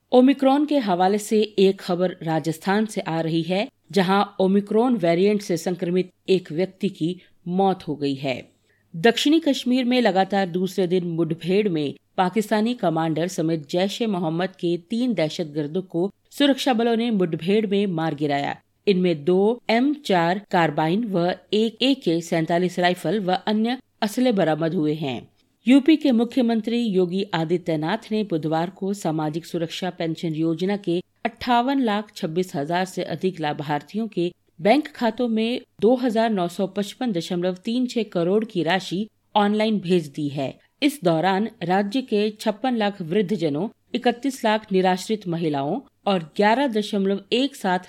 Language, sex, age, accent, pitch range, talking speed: Hindi, female, 50-69, native, 170-225 Hz, 135 wpm